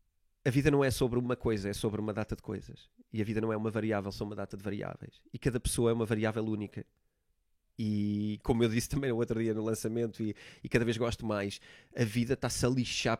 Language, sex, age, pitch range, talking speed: Portuguese, male, 20-39, 105-125 Hz, 240 wpm